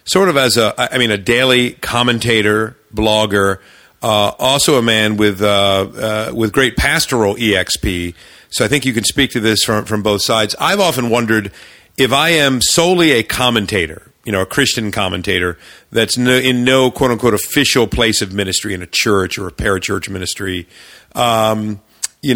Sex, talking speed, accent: male, 175 wpm, American